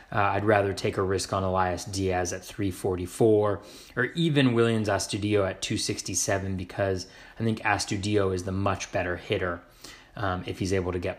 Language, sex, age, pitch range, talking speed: English, male, 30-49, 100-120 Hz, 170 wpm